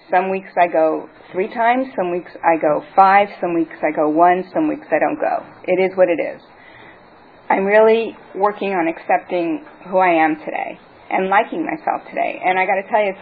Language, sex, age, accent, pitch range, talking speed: English, female, 40-59, American, 170-205 Hz, 210 wpm